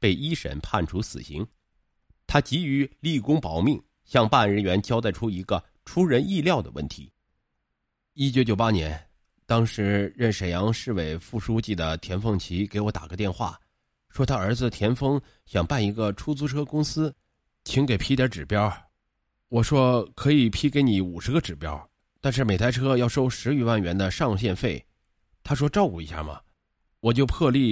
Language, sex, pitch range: Chinese, male, 90-130 Hz